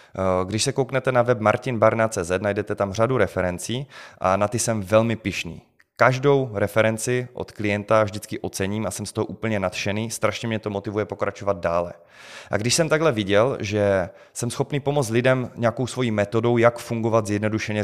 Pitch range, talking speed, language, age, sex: 105-130 Hz, 170 wpm, Czech, 20-39, male